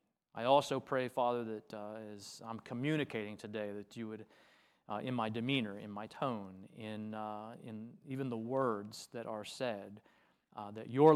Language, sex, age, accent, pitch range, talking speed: English, male, 30-49, American, 115-150 Hz, 170 wpm